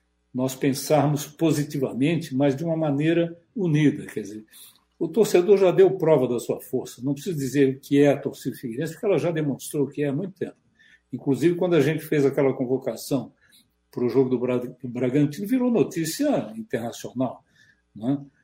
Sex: male